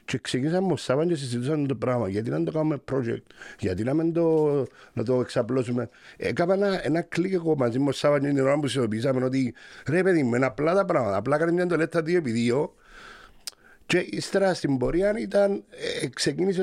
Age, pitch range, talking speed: 50-69, 100-150 Hz, 175 wpm